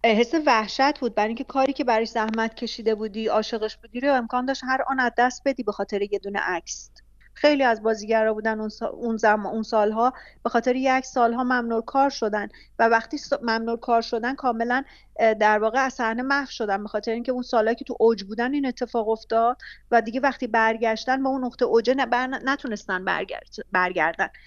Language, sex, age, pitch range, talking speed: Persian, female, 40-59, 225-270 Hz, 180 wpm